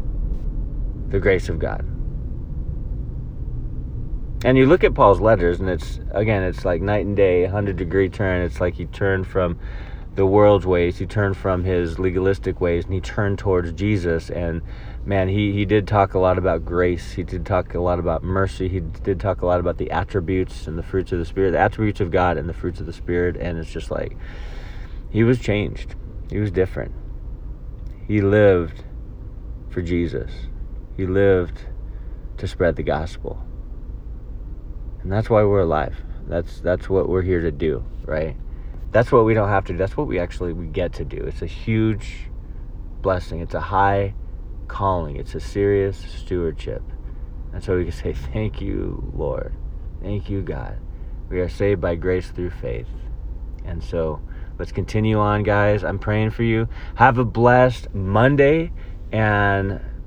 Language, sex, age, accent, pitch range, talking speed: English, male, 40-59, American, 85-100 Hz, 175 wpm